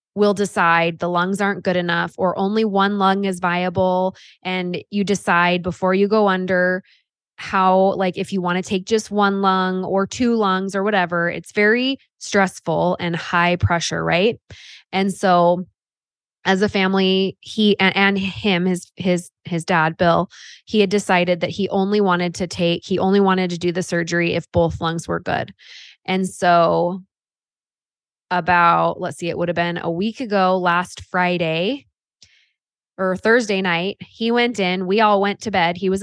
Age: 20-39